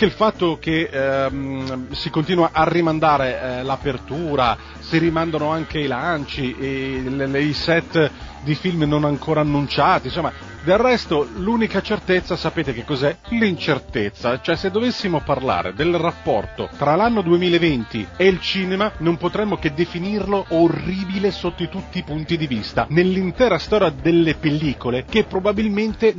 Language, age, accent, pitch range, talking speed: Italian, 40-59, native, 140-190 Hz, 140 wpm